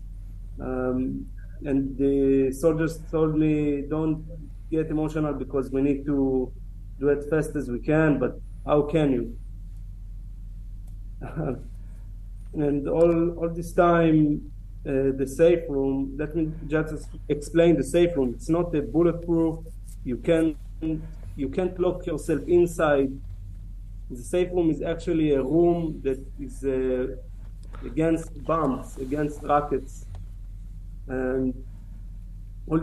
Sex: male